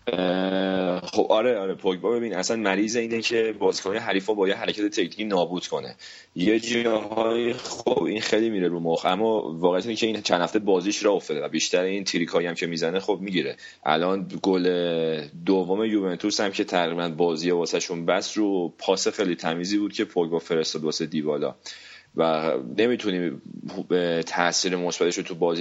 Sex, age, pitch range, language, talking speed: male, 30-49, 85-105 Hz, Persian, 170 wpm